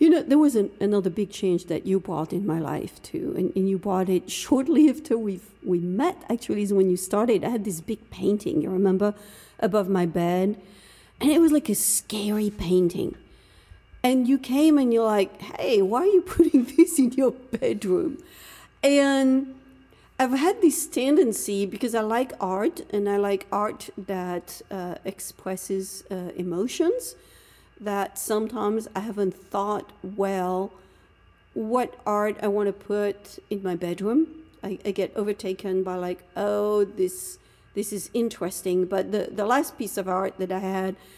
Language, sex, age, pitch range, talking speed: English, female, 50-69, 190-255 Hz, 170 wpm